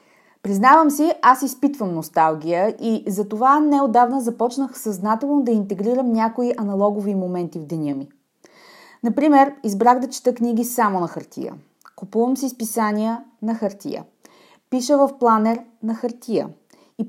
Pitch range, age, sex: 195-265 Hz, 30-49, female